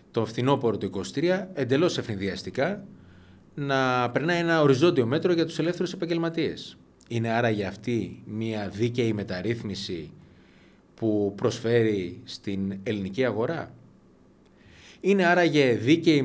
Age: 30-49